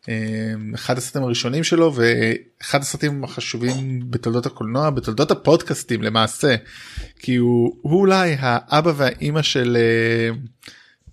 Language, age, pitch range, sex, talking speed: Hebrew, 20-39, 115-140 Hz, male, 110 wpm